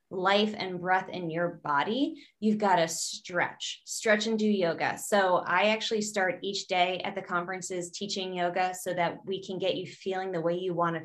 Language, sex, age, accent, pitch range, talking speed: English, female, 20-39, American, 190-215 Hz, 195 wpm